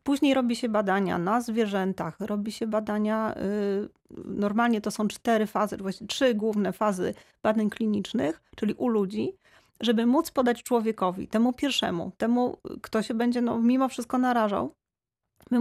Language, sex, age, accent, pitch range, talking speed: Polish, female, 30-49, native, 210-240 Hz, 140 wpm